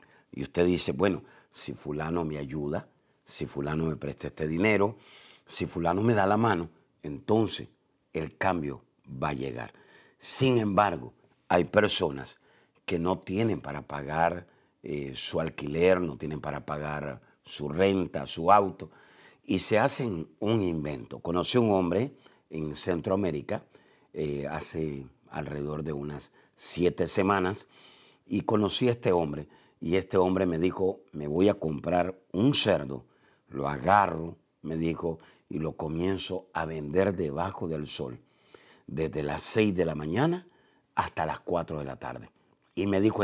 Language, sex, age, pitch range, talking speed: Spanish, male, 50-69, 75-100 Hz, 150 wpm